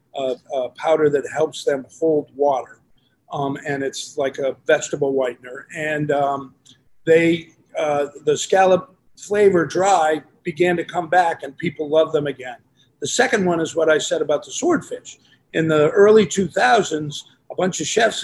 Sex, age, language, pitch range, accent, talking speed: male, 50-69, English, 150-185 Hz, American, 165 wpm